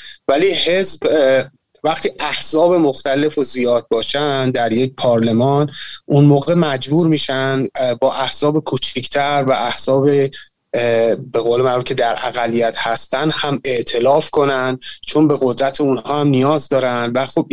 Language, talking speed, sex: Persian, 135 wpm, male